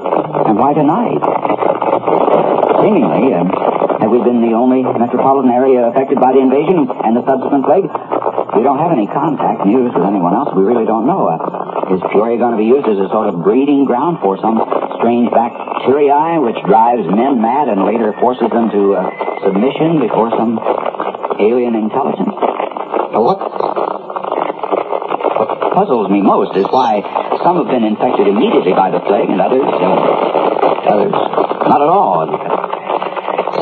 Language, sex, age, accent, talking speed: English, male, 50-69, American, 155 wpm